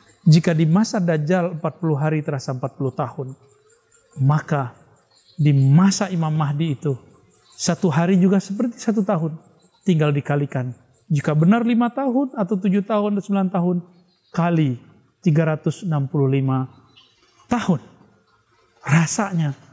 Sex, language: male, Indonesian